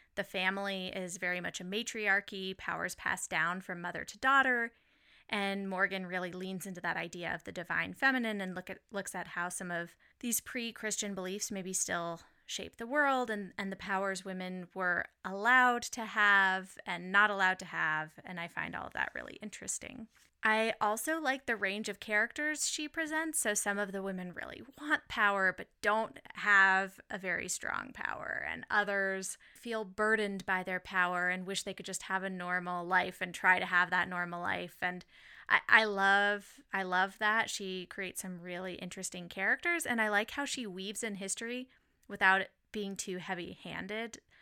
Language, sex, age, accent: English, female, 20-39, American